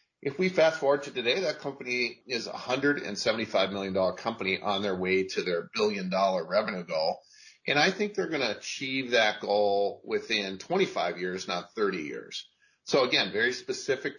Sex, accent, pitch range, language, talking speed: male, American, 95-125 Hz, English, 185 wpm